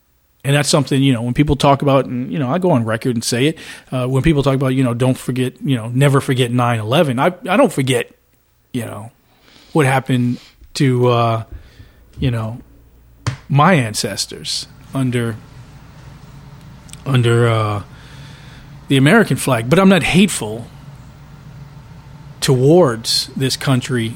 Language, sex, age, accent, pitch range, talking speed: English, male, 40-59, American, 120-145 Hz, 150 wpm